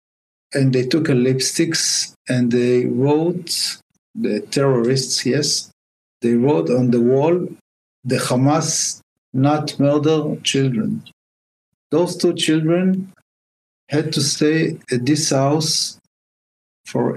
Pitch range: 120-145 Hz